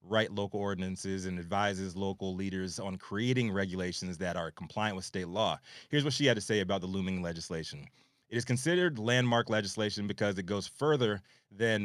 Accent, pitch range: American, 95-120 Hz